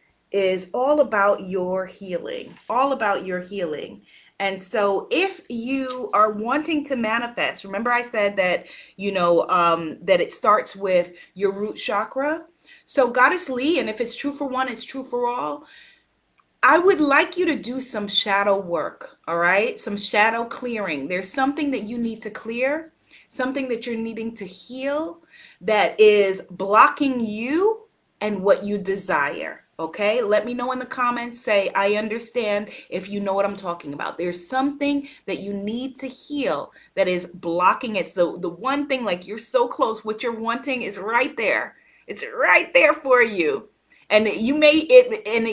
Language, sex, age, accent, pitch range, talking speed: English, female, 30-49, American, 200-265 Hz, 175 wpm